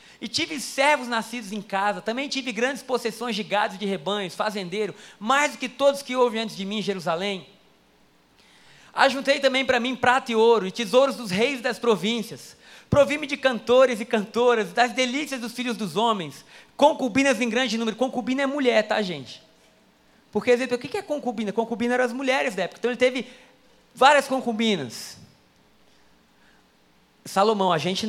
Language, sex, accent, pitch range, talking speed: Portuguese, male, Brazilian, 200-255 Hz, 170 wpm